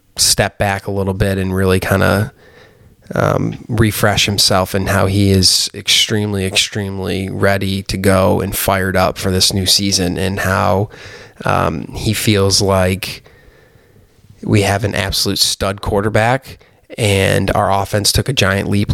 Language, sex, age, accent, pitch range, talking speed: English, male, 20-39, American, 95-105 Hz, 145 wpm